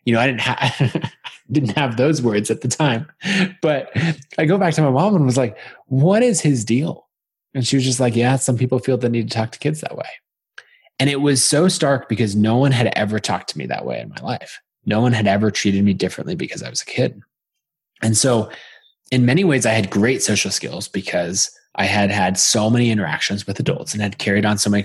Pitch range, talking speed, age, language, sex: 100-135 Hz, 235 wpm, 20-39, English, male